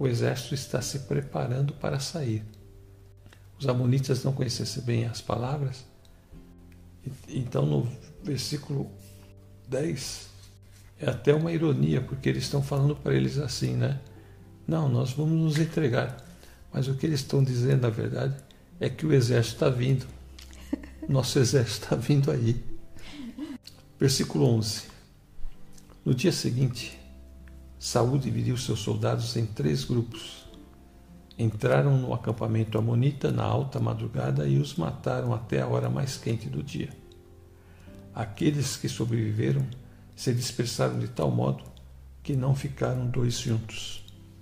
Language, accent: Portuguese, Brazilian